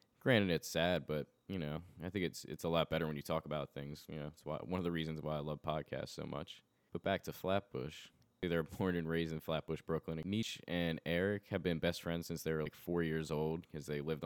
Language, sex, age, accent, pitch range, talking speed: English, male, 10-29, American, 75-85 Hz, 260 wpm